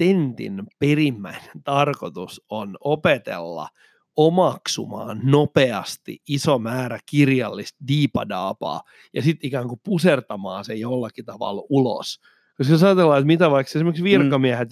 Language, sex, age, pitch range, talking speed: Finnish, male, 30-49, 125-160 Hz, 110 wpm